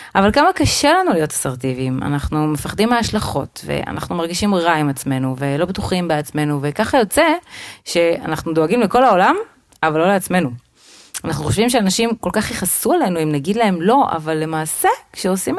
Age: 30-49